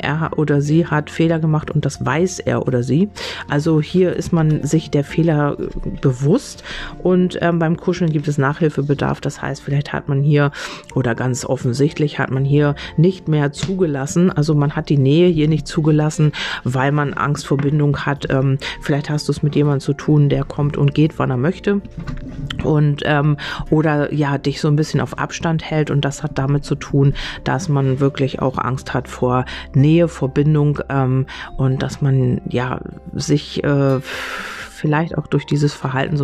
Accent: German